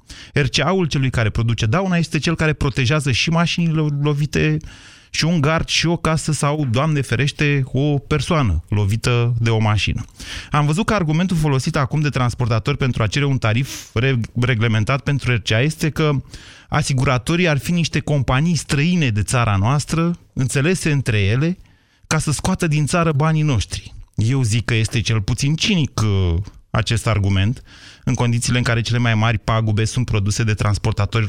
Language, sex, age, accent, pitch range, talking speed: Romanian, male, 30-49, native, 110-150 Hz, 165 wpm